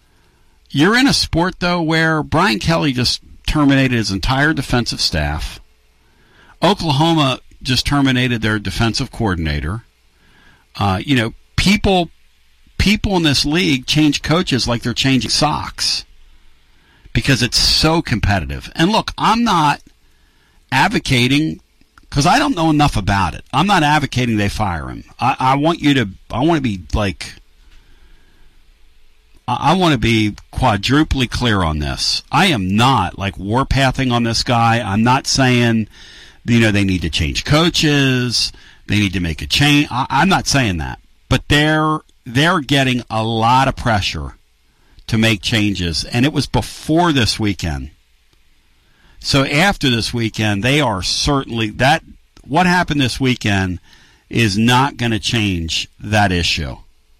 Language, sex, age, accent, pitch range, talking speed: English, male, 60-79, American, 90-140 Hz, 145 wpm